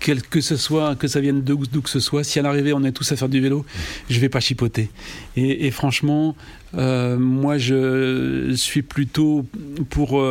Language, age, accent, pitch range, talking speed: French, 40-59, French, 130-150 Hz, 200 wpm